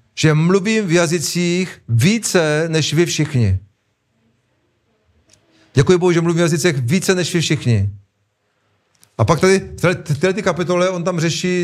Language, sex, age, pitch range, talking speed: Czech, male, 40-59, 130-165 Hz, 140 wpm